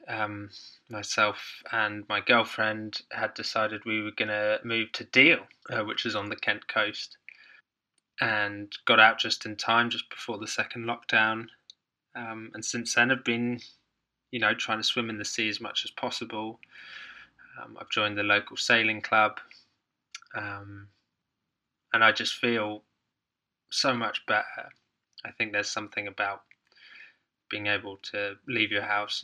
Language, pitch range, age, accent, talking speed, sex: English, 105-115 Hz, 10-29, British, 160 wpm, male